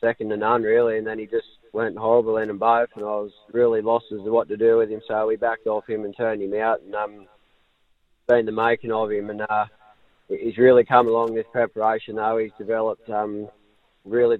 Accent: Australian